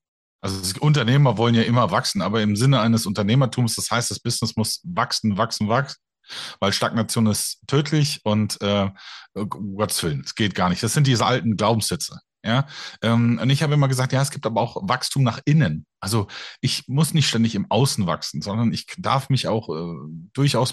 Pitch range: 115-140 Hz